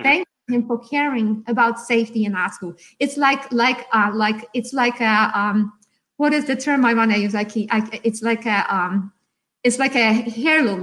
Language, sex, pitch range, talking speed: English, female, 235-330 Hz, 205 wpm